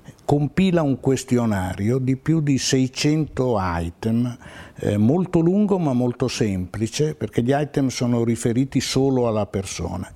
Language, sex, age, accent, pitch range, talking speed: Italian, male, 60-79, native, 110-150 Hz, 130 wpm